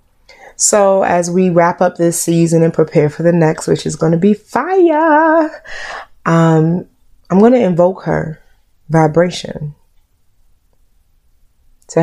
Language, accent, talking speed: English, American, 130 wpm